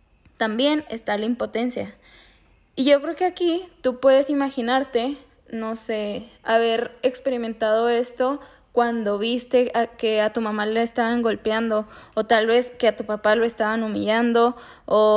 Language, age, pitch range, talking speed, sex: Spanish, 10-29, 220-260 Hz, 145 wpm, female